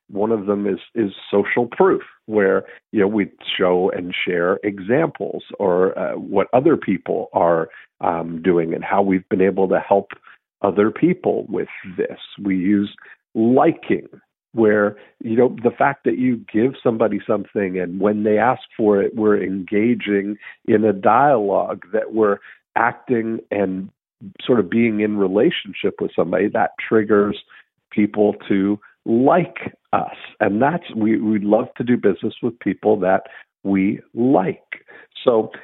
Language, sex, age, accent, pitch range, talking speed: English, male, 50-69, American, 100-120 Hz, 150 wpm